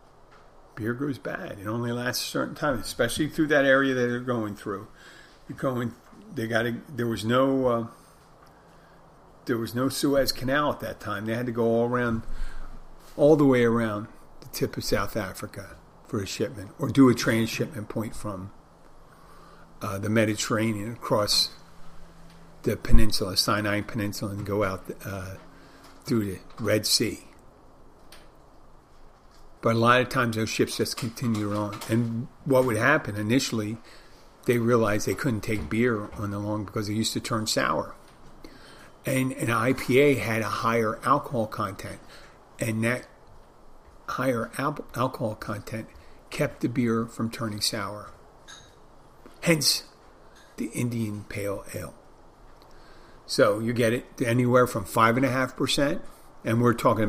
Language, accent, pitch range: English, American, 105-130 Hz